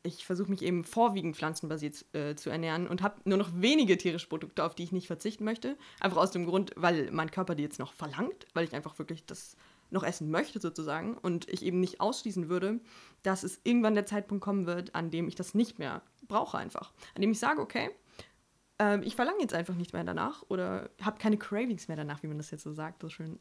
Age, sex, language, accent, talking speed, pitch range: 20-39, female, German, German, 230 wpm, 160-205 Hz